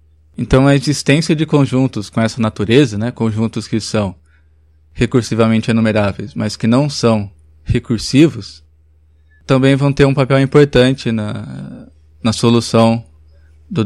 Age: 20-39